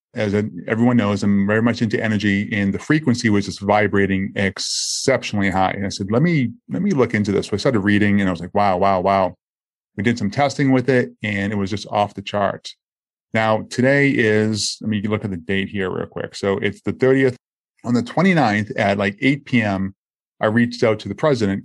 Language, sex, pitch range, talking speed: English, male, 100-120 Hz, 225 wpm